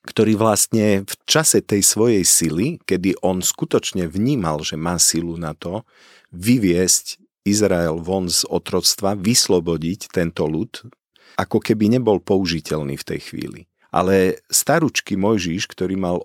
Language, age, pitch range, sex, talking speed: Slovak, 50-69, 85-110 Hz, male, 135 wpm